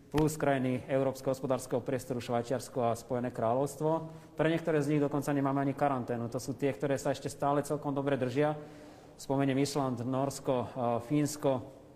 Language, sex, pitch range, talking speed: Slovak, male, 135-150 Hz, 155 wpm